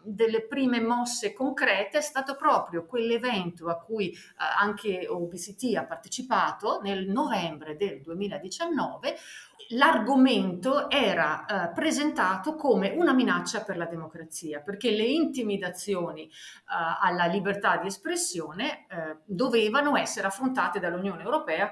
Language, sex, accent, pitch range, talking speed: Italian, female, native, 175-255 Hz, 110 wpm